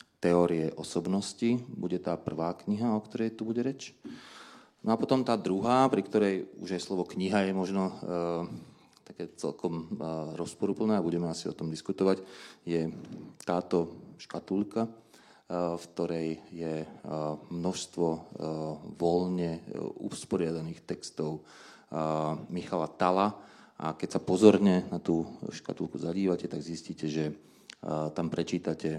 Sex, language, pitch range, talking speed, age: male, Slovak, 80-100 Hz, 135 wpm, 30-49